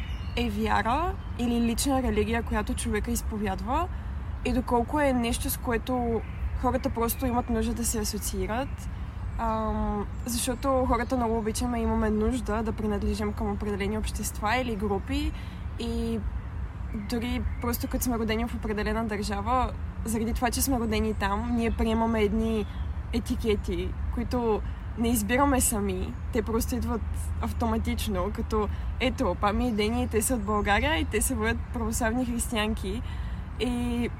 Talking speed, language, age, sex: 135 wpm, Bulgarian, 20-39, female